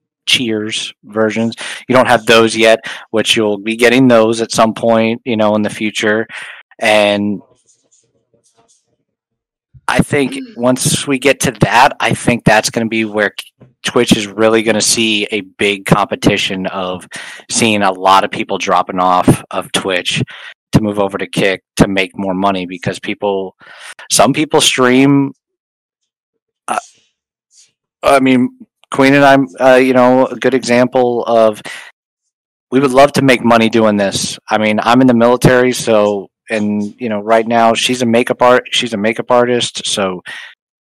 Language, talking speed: English, 160 wpm